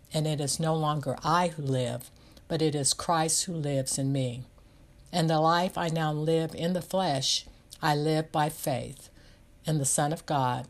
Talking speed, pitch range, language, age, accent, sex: 190 wpm, 135-170 Hz, English, 60-79, American, female